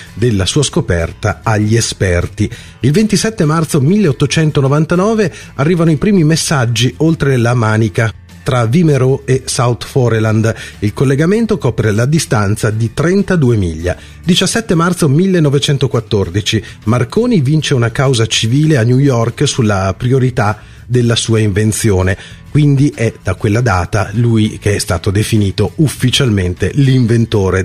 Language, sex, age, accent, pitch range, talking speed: Italian, male, 40-59, native, 105-145 Hz, 125 wpm